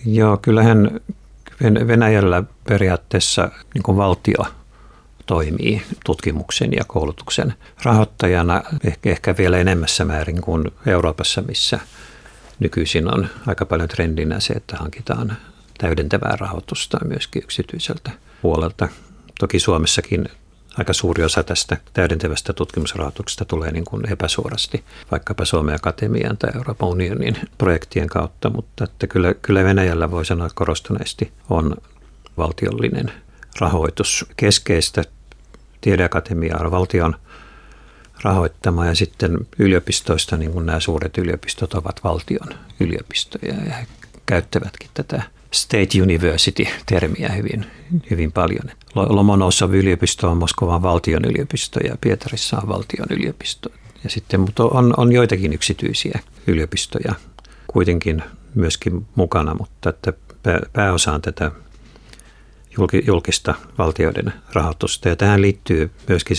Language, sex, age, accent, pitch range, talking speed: Finnish, male, 60-79, native, 85-105 Hz, 105 wpm